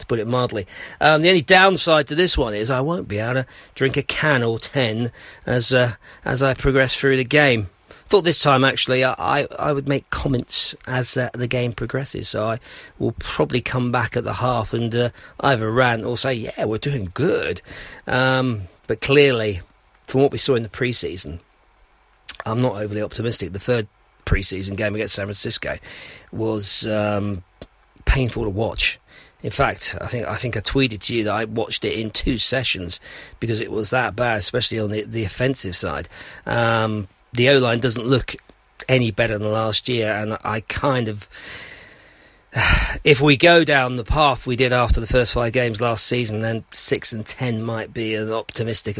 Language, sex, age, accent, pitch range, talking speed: English, male, 40-59, British, 110-130 Hz, 190 wpm